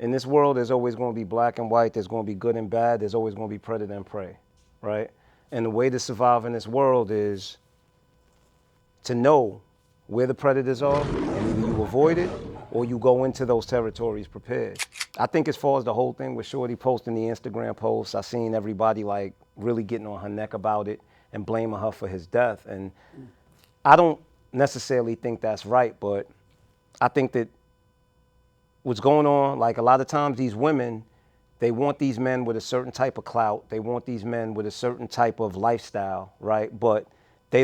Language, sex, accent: English, male, American